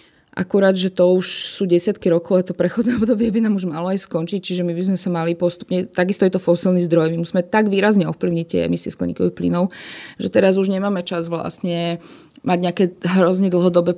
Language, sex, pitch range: Slovak, female, 170-205 Hz